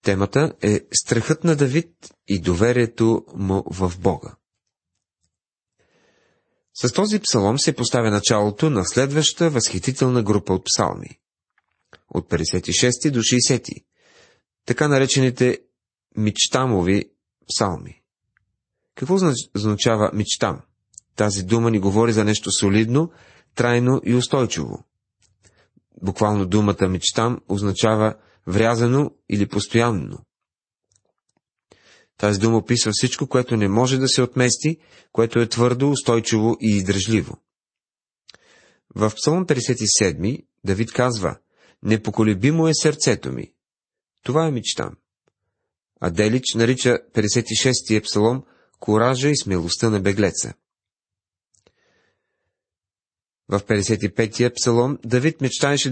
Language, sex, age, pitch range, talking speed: Bulgarian, male, 30-49, 100-130 Hz, 100 wpm